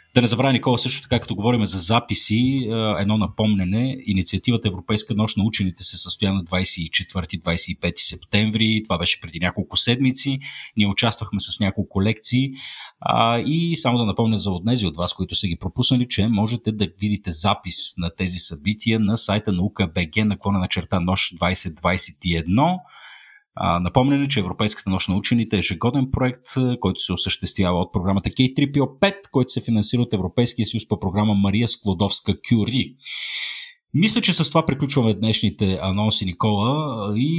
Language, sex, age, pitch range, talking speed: Bulgarian, male, 30-49, 95-120 Hz, 150 wpm